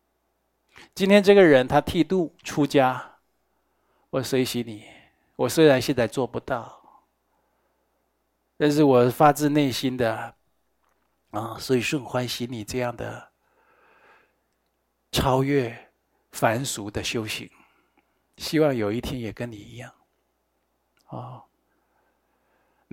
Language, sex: Chinese, male